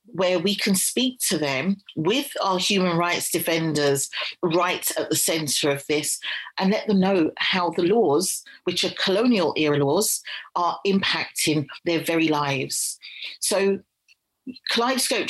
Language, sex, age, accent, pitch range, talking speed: English, female, 40-59, British, 160-195 Hz, 140 wpm